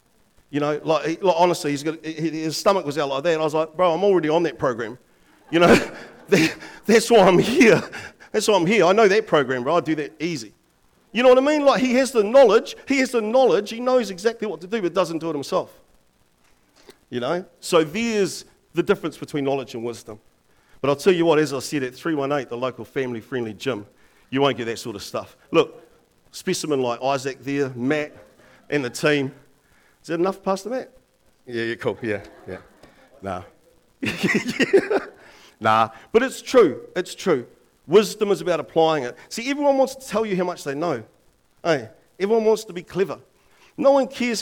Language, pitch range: English, 140-210 Hz